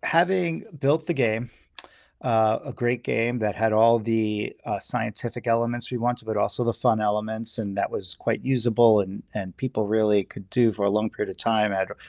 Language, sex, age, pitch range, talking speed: English, male, 40-59, 110-130 Hz, 200 wpm